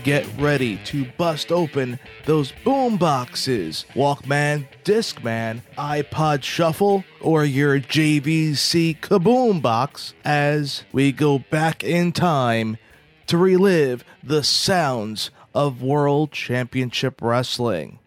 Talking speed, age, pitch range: 105 wpm, 30-49, 125-165 Hz